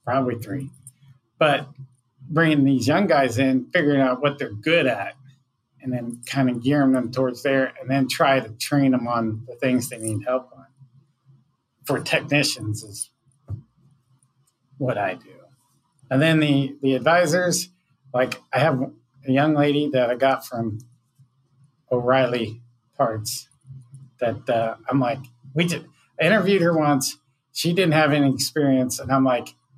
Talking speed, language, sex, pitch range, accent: 150 wpm, English, male, 125-140 Hz, American